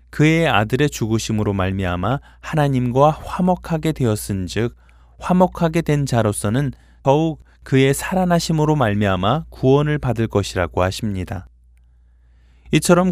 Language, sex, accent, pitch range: Korean, male, native, 90-155 Hz